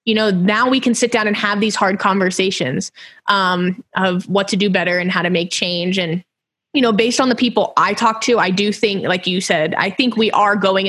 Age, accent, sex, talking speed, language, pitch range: 20-39, American, female, 245 wpm, English, 185-235 Hz